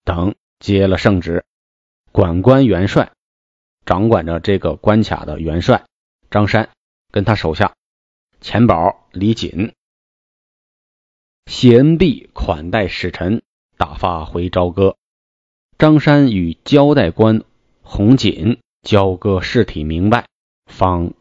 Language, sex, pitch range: Chinese, male, 85-110 Hz